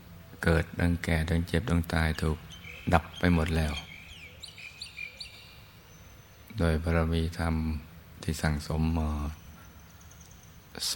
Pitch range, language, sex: 80-90 Hz, Thai, male